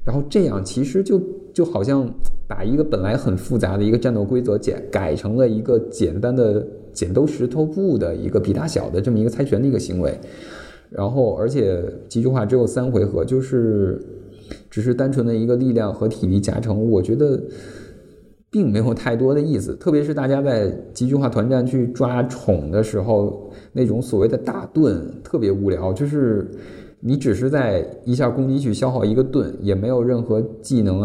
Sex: male